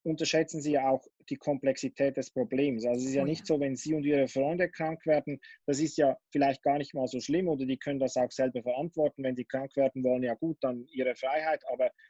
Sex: male